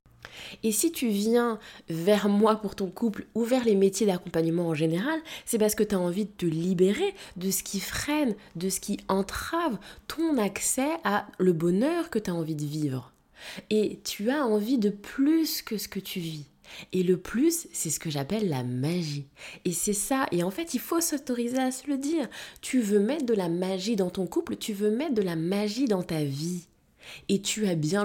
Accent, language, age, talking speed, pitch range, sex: French, French, 20-39, 210 wpm, 185-235 Hz, female